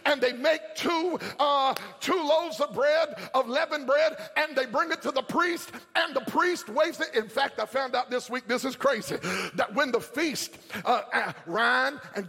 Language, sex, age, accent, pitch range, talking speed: English, male, 50-69, American, 260-320 Hz, 205 wpm